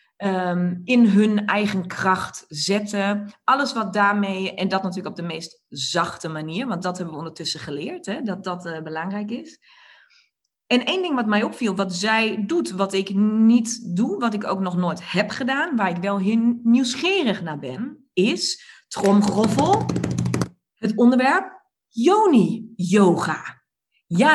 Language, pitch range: Dutch, 185-240 Hz